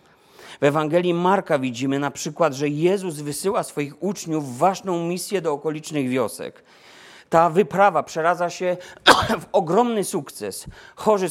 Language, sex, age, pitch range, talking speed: Polish, male, 40-59, 125-170 Hz, 135 wpm